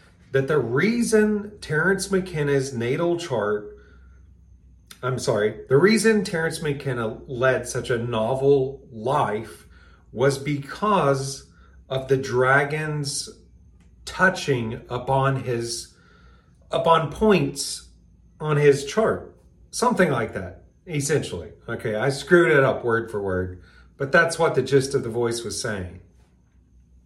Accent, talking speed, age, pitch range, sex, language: American, 120 wpm, 40-59, 100-145 Hz, male, English